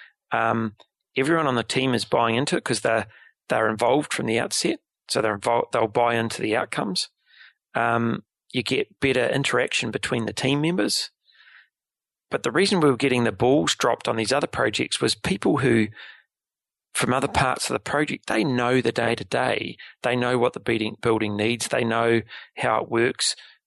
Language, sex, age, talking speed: English, male, 30-49, 170 wpm